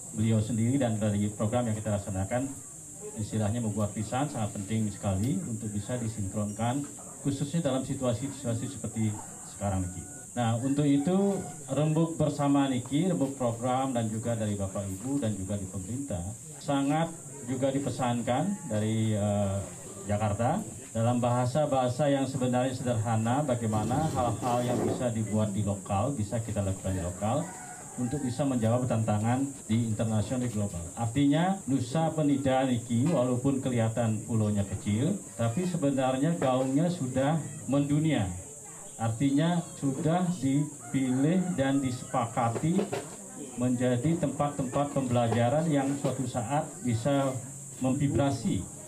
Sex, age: male, 40-59